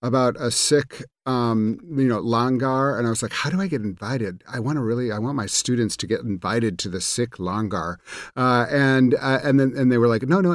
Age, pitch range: 50-69, 120-155 Hz